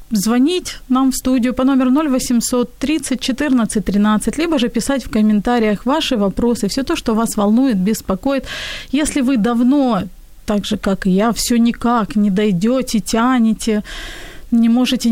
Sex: female